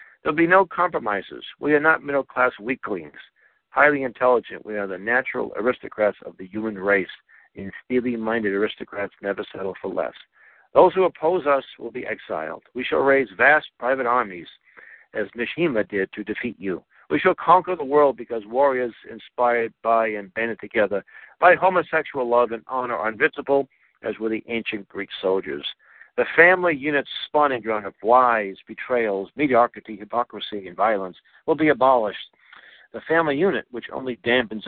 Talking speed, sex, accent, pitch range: 165 wpm, male, American, 105-130 Hz